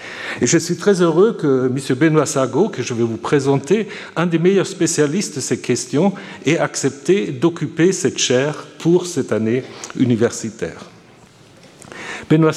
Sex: male